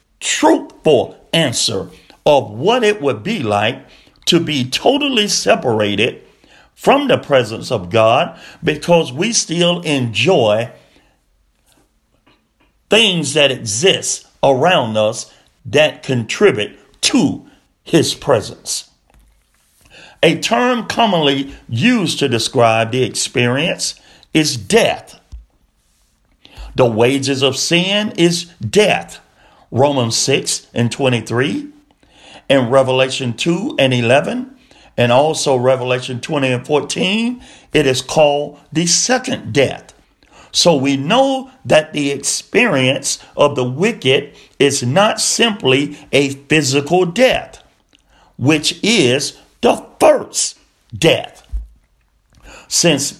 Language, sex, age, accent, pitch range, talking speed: English, male, 50-69, American, 125-180 Hz, 100 wpm